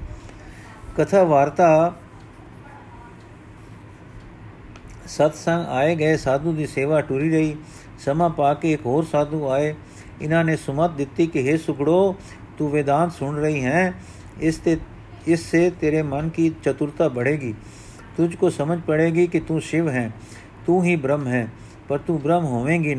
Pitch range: 130-170 Hz